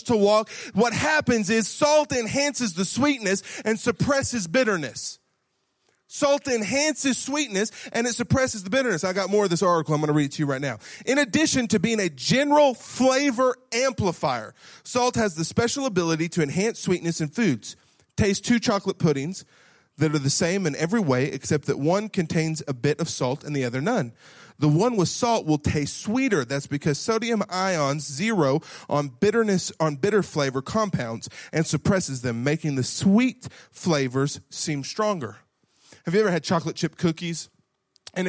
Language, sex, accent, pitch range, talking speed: English, male, American, 150-220 Hz, 170 wpm